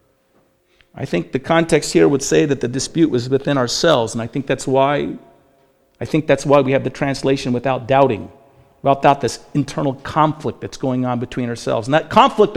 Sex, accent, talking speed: male, American, 190 wpm